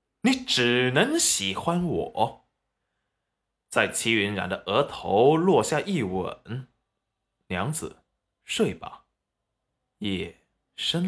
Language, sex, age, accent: Chinese, male, 20-39, native